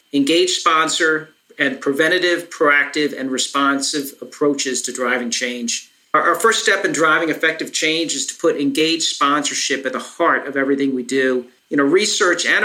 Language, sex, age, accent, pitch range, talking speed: English, male, 40-59, American, 140-180 Hz, 165 wpm